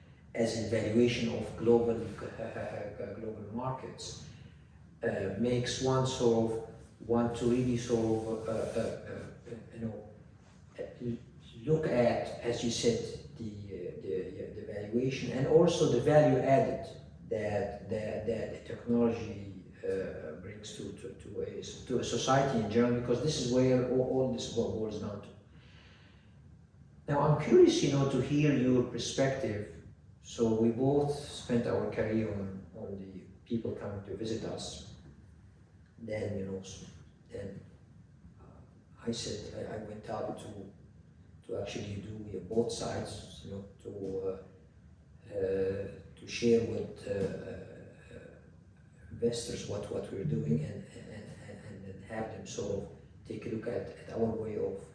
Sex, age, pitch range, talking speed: male, 50-69, 100-120 Hz, 145 wpm